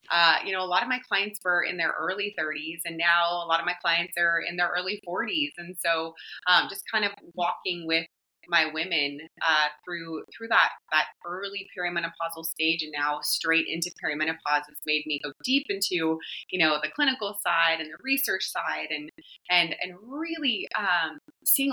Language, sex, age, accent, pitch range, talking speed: English, female, 30-49, American, 165-200 Hz, 190 wpm